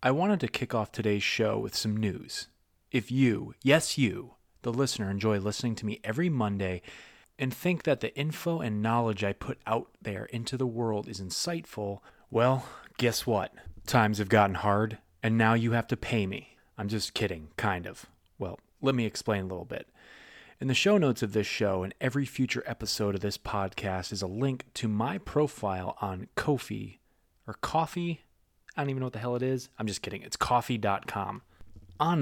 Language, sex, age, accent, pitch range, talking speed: English, male, 30-49, American, 100-130 Hz, 190 wpm